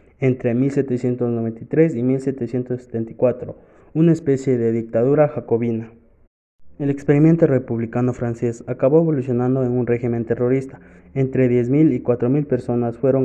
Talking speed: 115 wpm